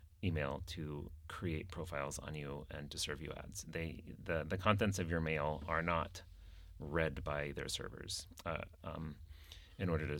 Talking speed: 170 wpm